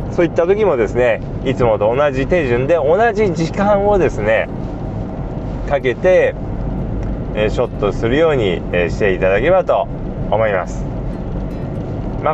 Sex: male